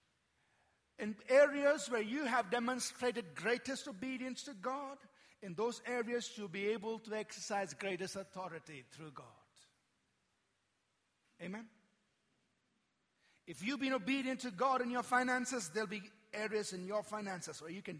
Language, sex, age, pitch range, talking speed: English, male, 50-69, 165-240 Hz, 135 wpm